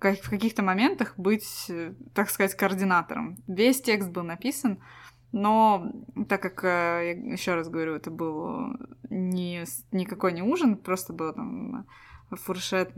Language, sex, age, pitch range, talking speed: Russian, female, 20-39, 175-225 Hz, 120 wpm